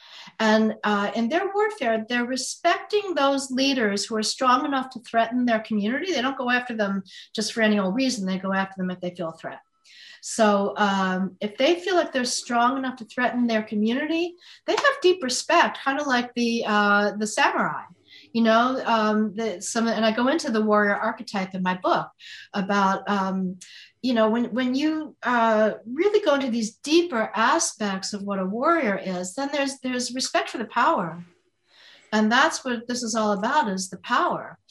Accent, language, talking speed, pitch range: American, English, 190 wpm, 205-265 Hz